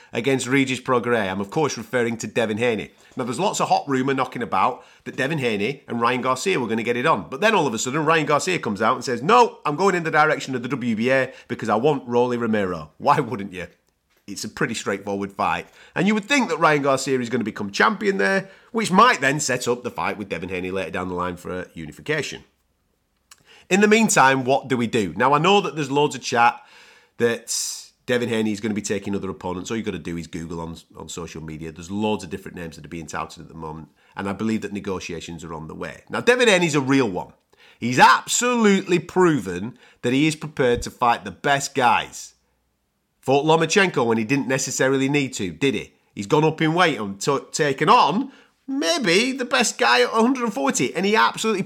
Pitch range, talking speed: 110-165 Hz, 230 wpm